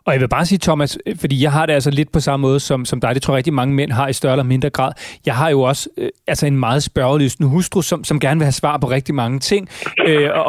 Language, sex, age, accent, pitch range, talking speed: Danish, male, 30-49, native, 140-185 Hz, 290 wpm